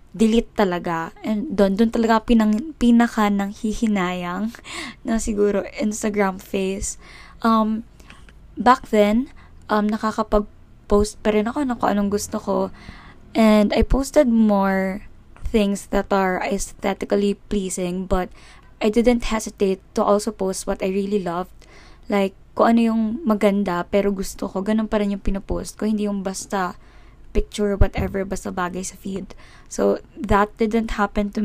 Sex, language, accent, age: female, Filipino, native, 20-39